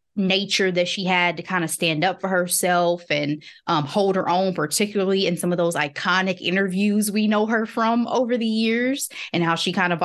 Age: 20-39